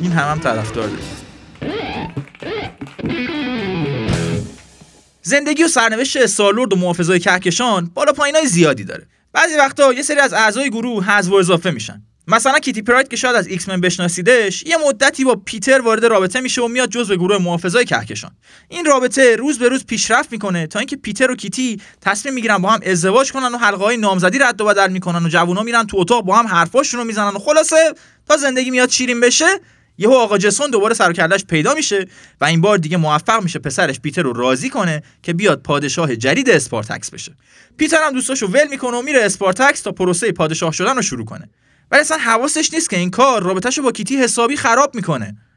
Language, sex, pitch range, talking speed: Persian, male, 185-265 Hz, 190 wpm